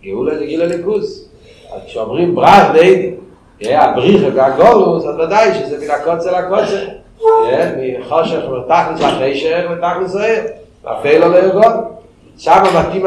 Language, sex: Hebrew, male